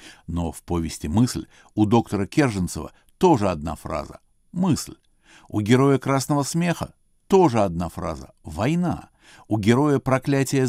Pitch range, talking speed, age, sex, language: 85-125 Hz, 125 wpm, 60-79, male, Russian